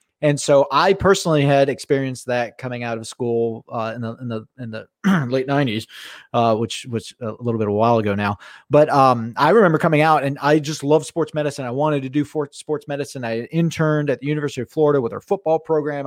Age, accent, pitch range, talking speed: 30-49, American, 120-155 Hz, 230 wpm